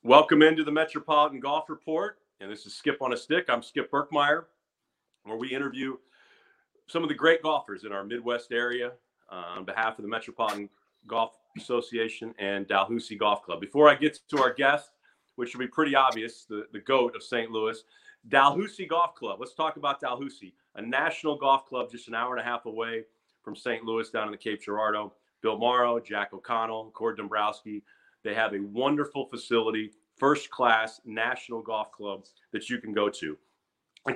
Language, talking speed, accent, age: English, 185 wpm, American, 40-59